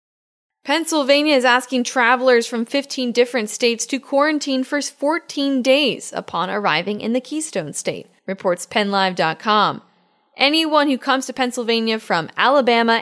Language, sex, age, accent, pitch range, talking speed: English, female, 10-29, American, 205-260 Hz, 130 wpm